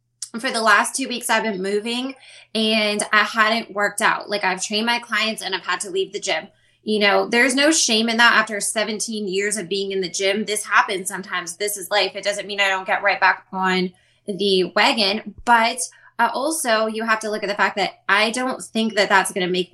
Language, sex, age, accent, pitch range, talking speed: English, female, 20-39, American, 185-220 Hz, 230 wpm